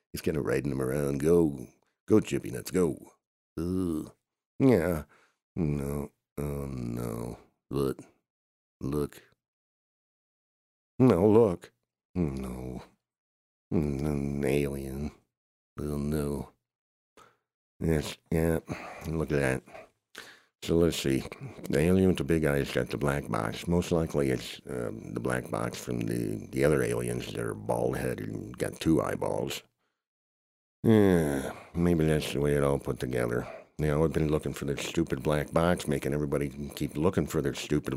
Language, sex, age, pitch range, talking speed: English, male, 60-79, 65-80 Hz, 145 wpm